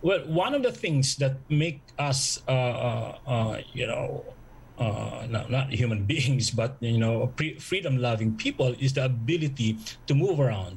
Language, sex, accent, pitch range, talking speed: English, male, Filipino, 125-145 Hz, 160 wpm